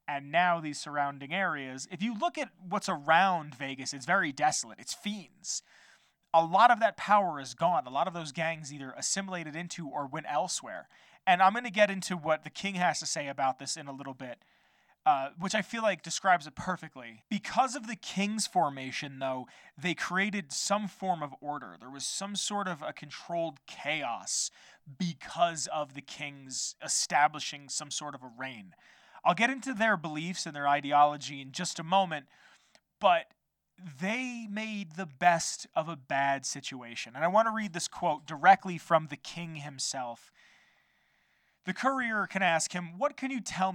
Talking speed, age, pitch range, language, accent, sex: 180 wpm, 30-49, 145-195 Hz, English, American, male